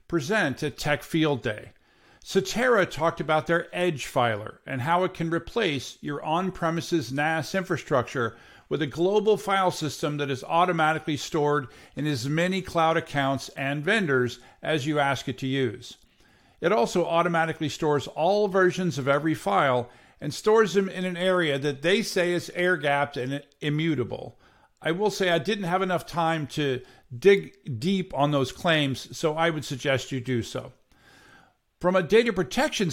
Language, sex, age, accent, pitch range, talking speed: English, male, 50-69, American, 140-185 Hz, 160 wpm